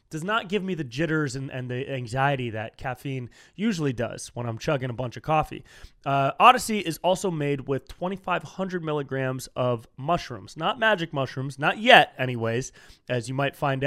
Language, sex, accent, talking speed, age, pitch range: English, male, American, 175 wpm, 20-39, 130-180 Hz